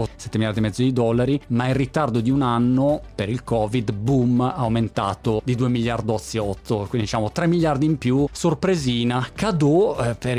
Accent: native